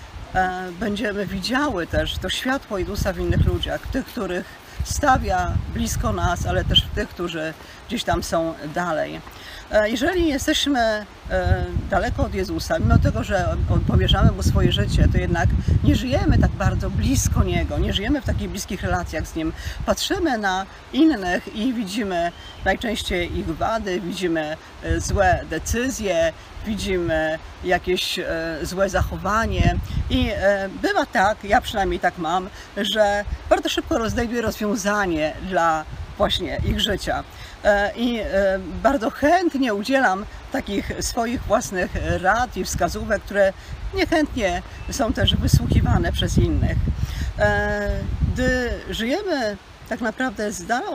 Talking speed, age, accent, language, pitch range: 125 wpm, 40-59, native, Polish, 165-240 Hz